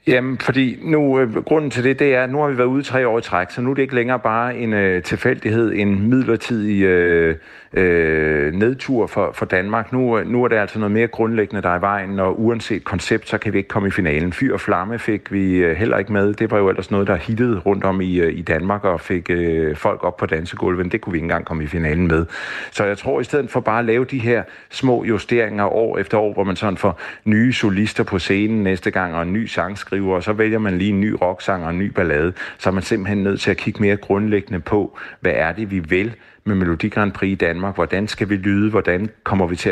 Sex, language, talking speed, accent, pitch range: male, Danish, 255 wpm, native, 90-115 Hz